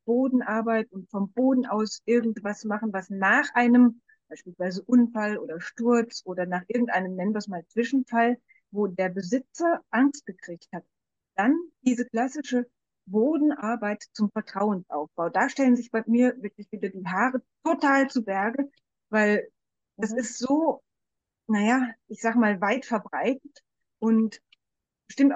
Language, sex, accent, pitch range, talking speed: German, female, German, 200-255 Hz, 135 wpm